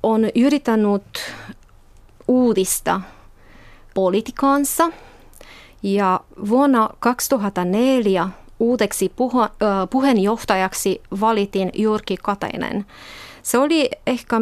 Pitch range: 195-245 Hz